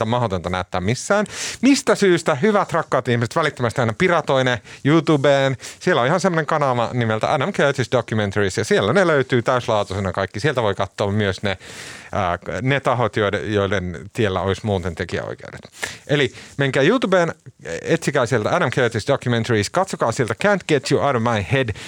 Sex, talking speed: male, 160 wpm